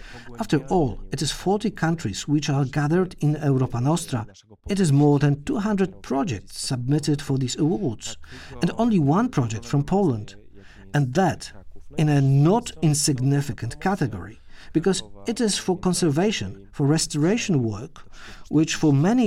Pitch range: 125-175 Hz